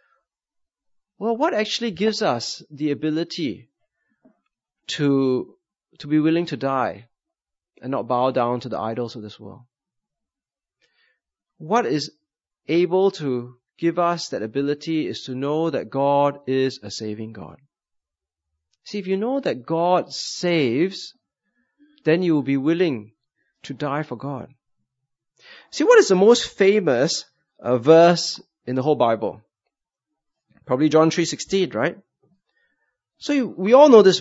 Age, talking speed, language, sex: 30-49, 135 wpm, English, male